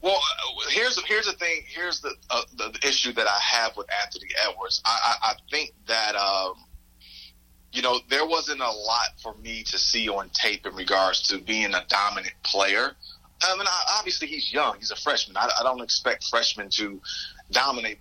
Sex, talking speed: male, 190 wpm